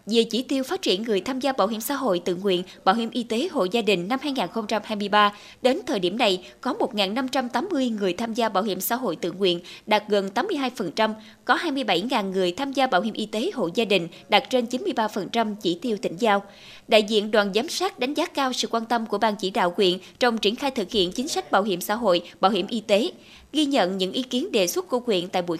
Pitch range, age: 195-255 Hz, 20-39